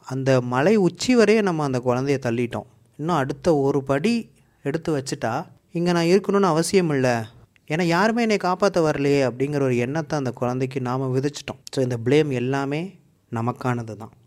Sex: male